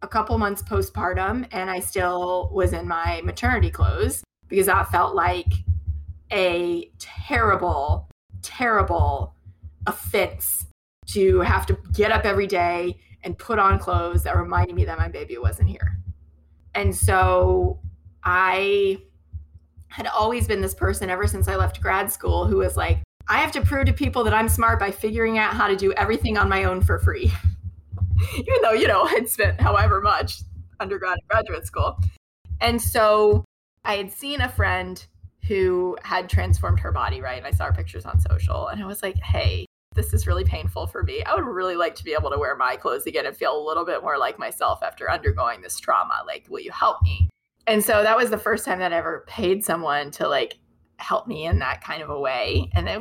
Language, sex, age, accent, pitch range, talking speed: English, female, 20-39, American, 85-105 Hz, 195 wpm